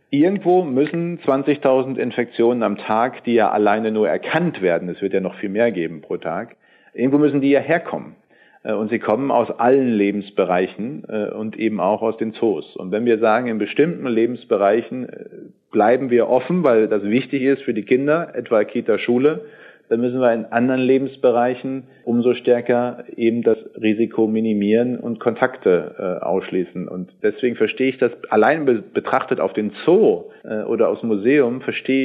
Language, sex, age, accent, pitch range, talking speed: German, male, 40-59, German, 105-125 Hz, 165 wpm